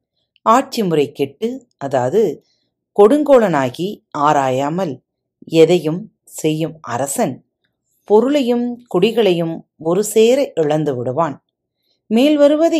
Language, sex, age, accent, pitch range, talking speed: Tamil, female, 40-59, native, 160-225 Hz, 70 wpm